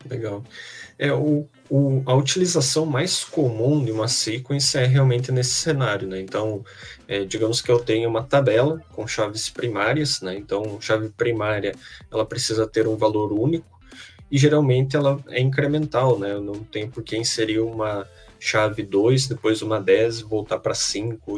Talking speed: 165 wpm